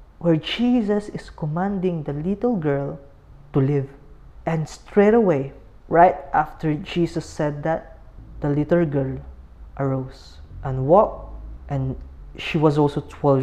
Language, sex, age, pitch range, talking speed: Filipino, female, 20-39, 135-180 Hz, 125 wpm